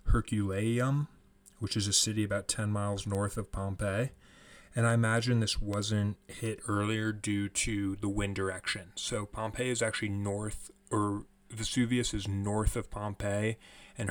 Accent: American